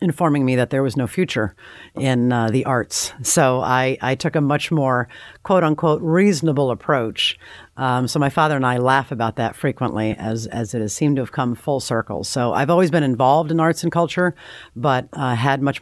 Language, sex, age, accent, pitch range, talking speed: English, female, 50-69, American, 115-135 Hz, 210 wpm